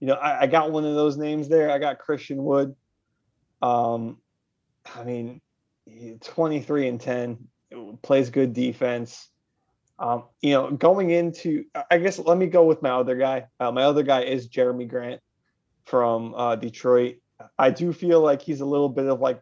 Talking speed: 175 wpm